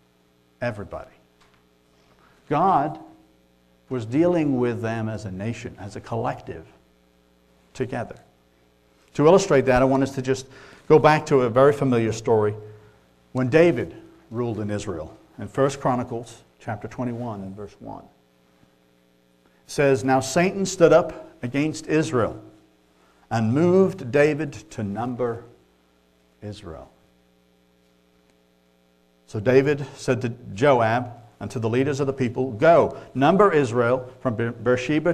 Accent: American